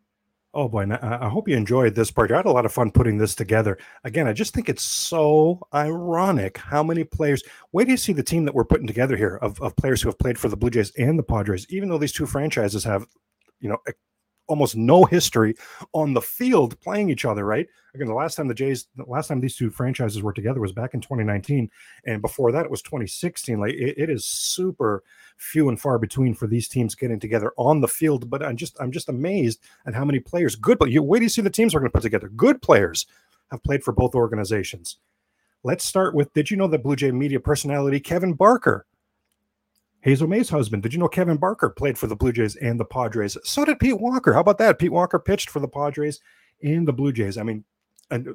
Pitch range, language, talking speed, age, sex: 115-155 Hz, English, 235 wpm, 30-49, male